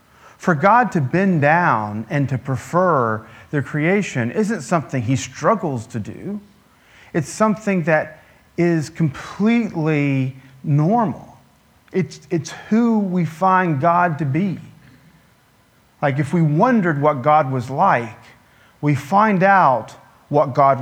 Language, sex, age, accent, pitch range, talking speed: English, male, 40-59, American, 135-185 Hz, 125 wpm